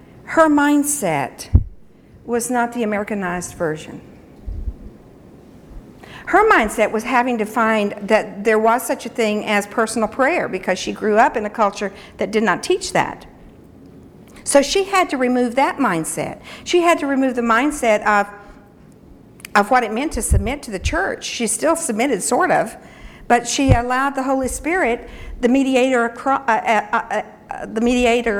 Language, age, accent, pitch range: English, 60-79, American, 195-255 Hz